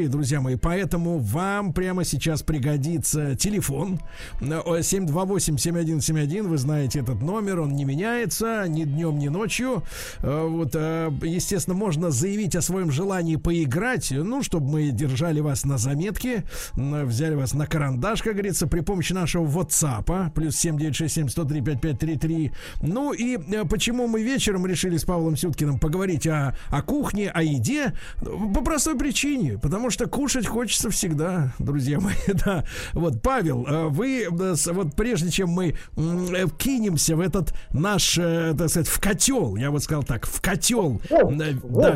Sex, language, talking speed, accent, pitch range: male, Russian, 135 wpm, native, 150-195 Hz